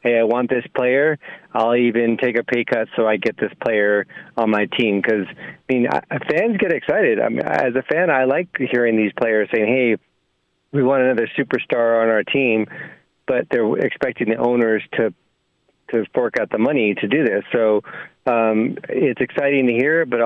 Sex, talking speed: male, 195 wpm